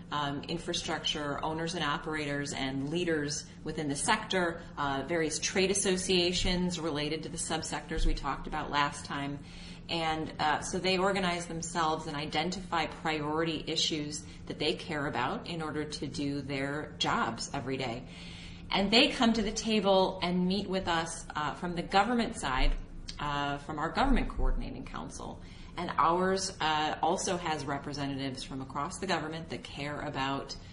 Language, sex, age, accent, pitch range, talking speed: English, female, 30-49, American, 140-175 Hz, 155 wpm